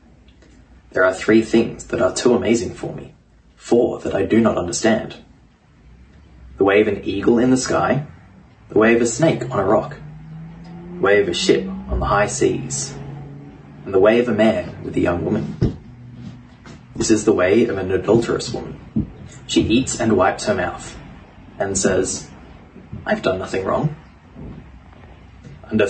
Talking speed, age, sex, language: 165 wpm, 20-39, male, English